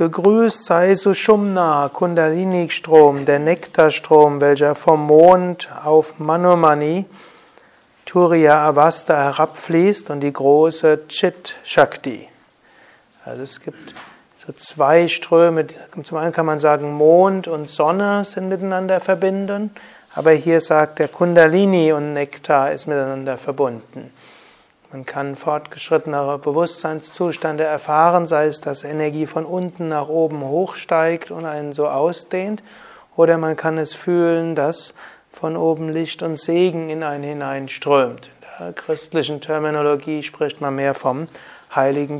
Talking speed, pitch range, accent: 120 wpm, 145-170 Hz, German